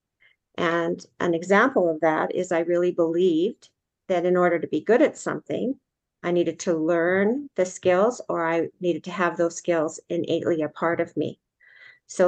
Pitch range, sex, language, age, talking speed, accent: 170-190 Hz, female, English, 50-69, 175 wpm, American